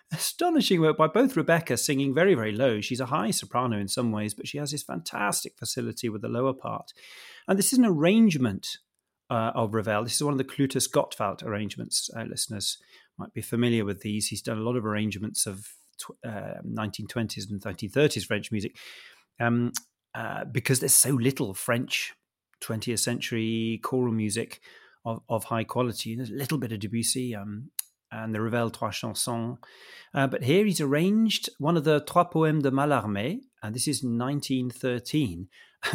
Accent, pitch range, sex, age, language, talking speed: British, 115-170 Hz, male, 30-49, English, 175 wpm